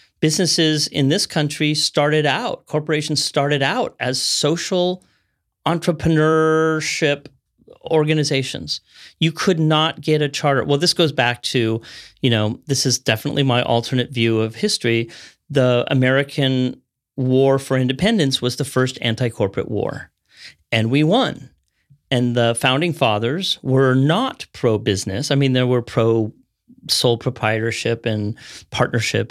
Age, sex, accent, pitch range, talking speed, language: 40-59, male, American, 120-155 Hz, 130 wpm, English